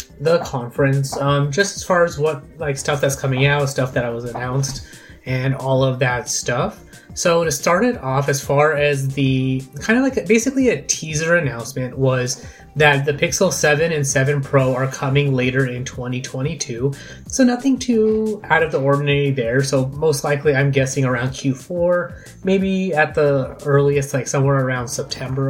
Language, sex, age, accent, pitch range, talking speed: English, male, 20-39, American, 130-150 Hz, 180 wpm